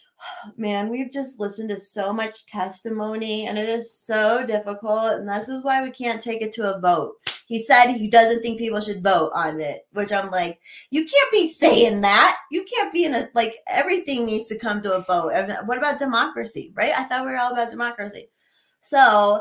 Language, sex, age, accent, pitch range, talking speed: English, female, 20-39, American, 200-265 Hz, 205 wpm